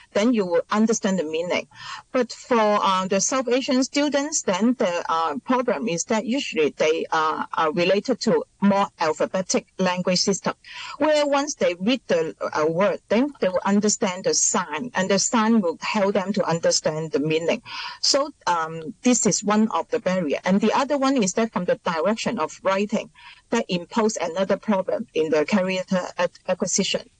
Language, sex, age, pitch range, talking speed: English, female, 40-59, 185-255 Hz, 175 wpm